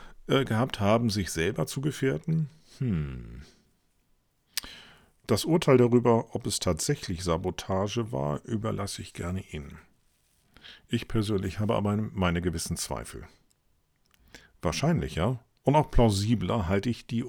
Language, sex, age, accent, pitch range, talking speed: German, male, 50-69, German, 80-115 Hz, 110 wpm